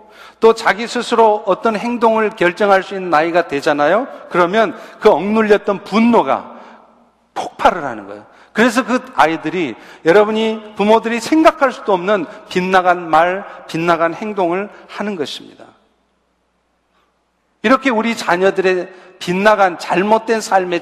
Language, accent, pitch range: Korean, native, 185-230 Hz